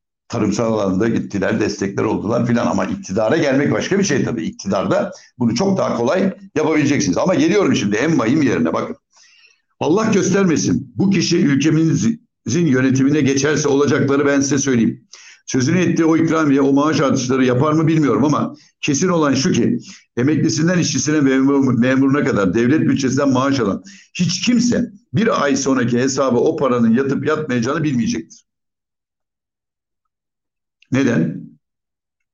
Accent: native